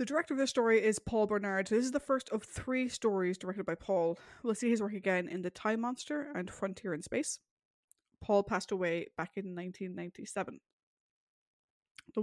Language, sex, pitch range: English, female, 185-235 Hz